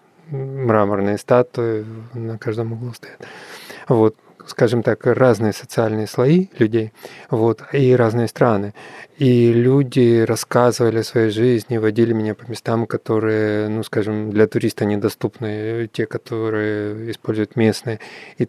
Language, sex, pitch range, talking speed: Ukrainian, male, 110-120 Hz, 125 wpm